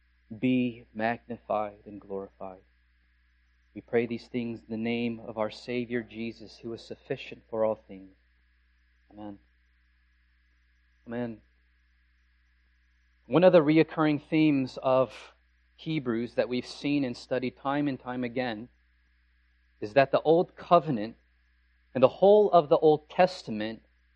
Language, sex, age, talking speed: English, male, 30-49, 125 wpm